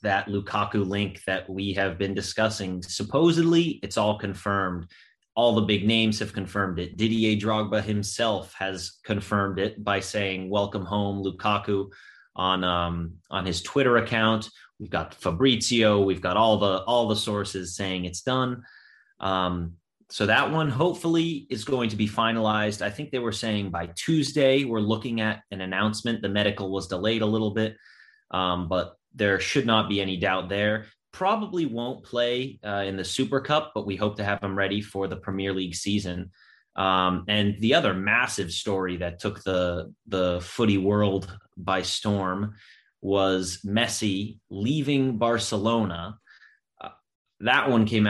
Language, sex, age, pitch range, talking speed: English, male, 30-49, 95-110 Hz, 160 wpm